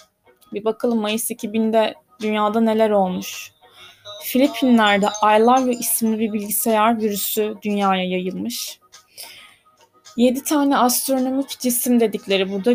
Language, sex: Turkish, female